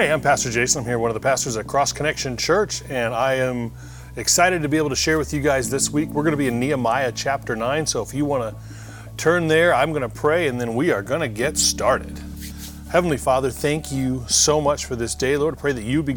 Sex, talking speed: male, 260 wpm